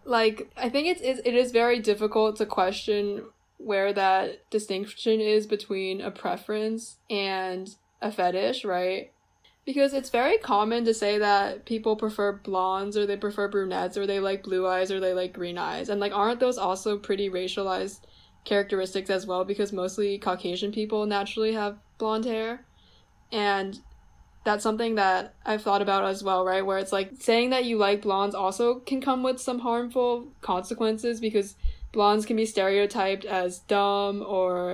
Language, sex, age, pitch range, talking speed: English, female, 20-39, 195-220 Hz, 170 wpm